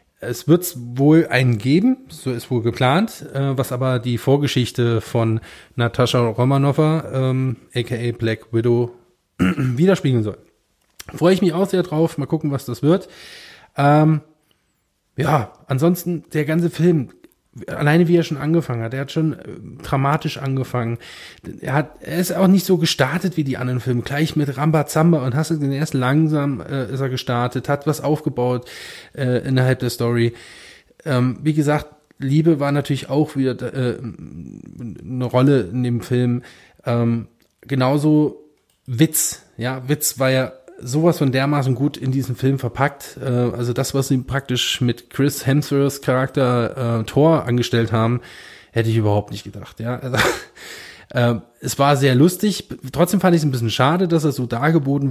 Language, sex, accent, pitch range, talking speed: German, male, German, 125-150 Hz, 160 wpm